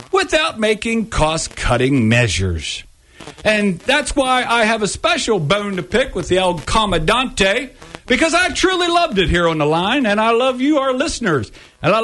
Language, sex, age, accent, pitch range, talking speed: English, male, 50-69, American, 155-255 Hz, 175 wpm